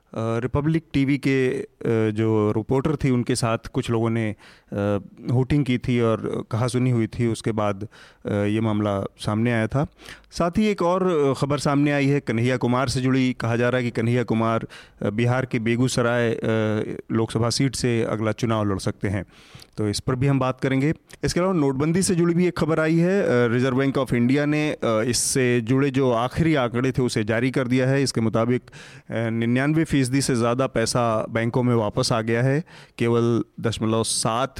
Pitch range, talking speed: 115-135 Hz, 180 wpm